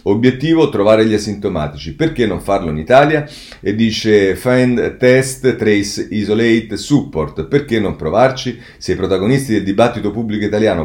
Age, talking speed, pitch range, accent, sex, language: 40-59, 145 wpm, 95-125 Hz, native, male, Italian